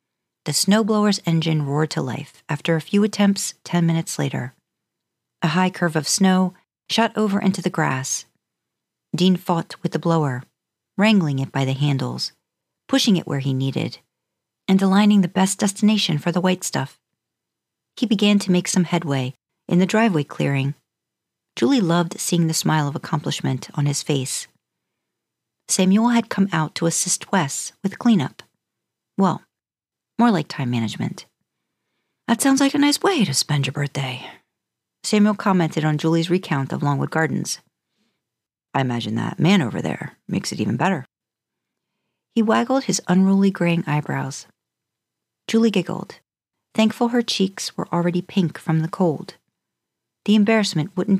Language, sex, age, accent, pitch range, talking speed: English, female, 50-69, American, 145-200 Hz, 150 wpm